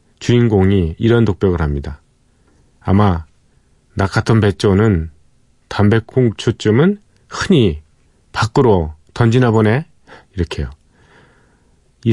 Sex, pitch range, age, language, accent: male, 90-120 Hz, 40-59, Korean, native